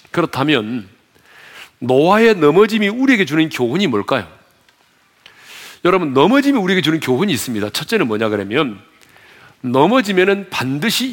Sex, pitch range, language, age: male, 135-225 Hz, Korean, 40-59